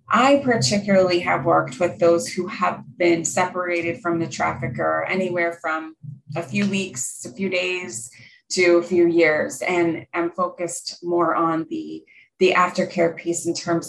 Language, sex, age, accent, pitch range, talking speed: English, female, 30-49, American, 165-190 Hz, 155 wpm